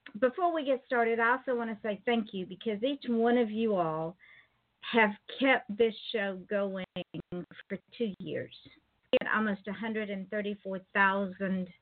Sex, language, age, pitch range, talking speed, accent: female, English, 50-69, 185-230 Hz, 145 wpm, American